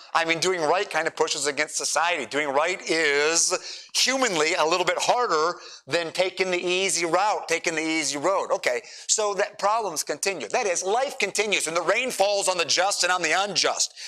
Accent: American